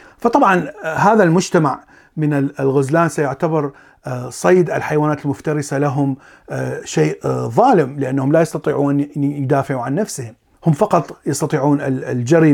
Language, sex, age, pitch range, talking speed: Arabic, male, 40-59, 140-165 Hz, 110 wpm